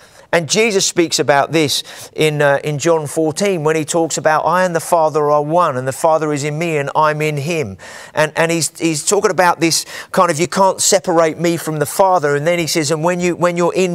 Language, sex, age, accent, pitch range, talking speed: English, male, 40-59, British, 155-185 Hz, 240 wpm